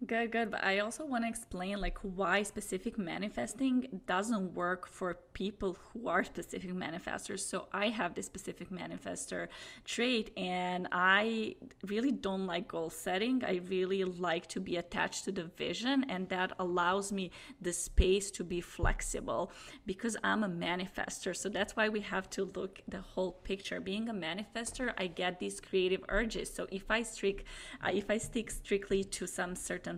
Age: 20-39